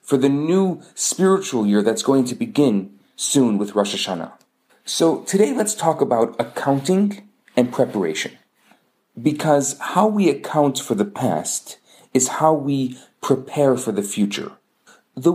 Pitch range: 130-185 Hz